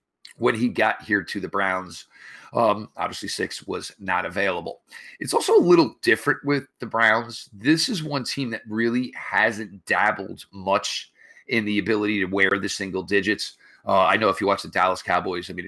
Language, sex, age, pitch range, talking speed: English, male, 40-59, 95-125 Hz, 190 wpm